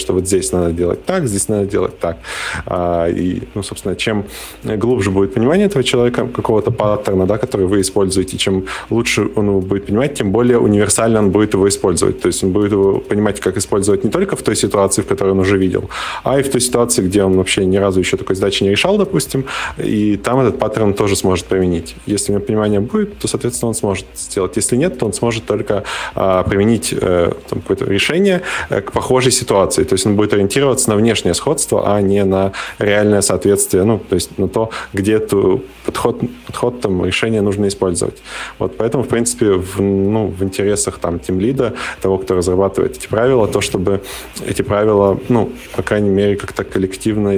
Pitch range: 95-110 Hz